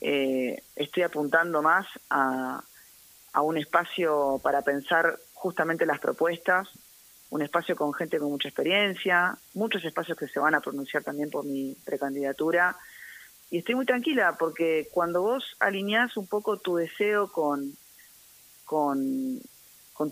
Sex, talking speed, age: female, 135 wpm, 30-49